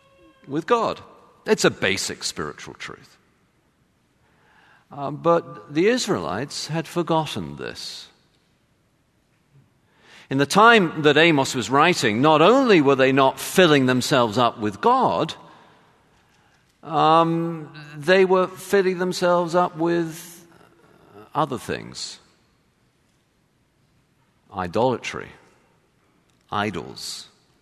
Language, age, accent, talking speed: English, 50-69, British, 90 wpm